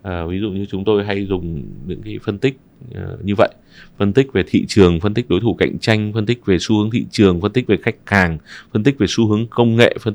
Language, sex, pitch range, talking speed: Vietnamese, male, 95-130 Hz, 260 wpm